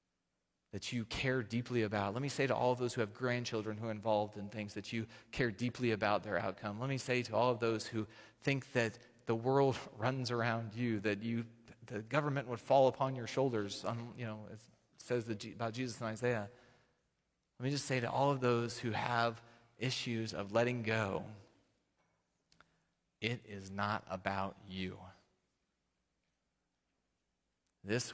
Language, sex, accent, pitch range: English, male, American, 100-120 Hz